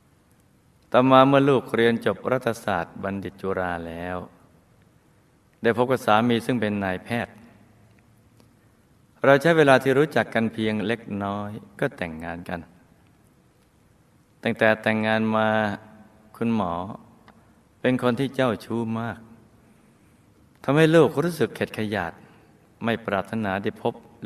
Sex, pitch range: male, 100-125 Hz